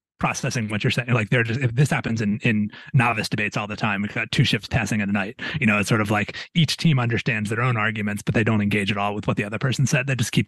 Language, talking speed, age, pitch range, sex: English, 300 wpm, 30-49, 115-145 Hz, male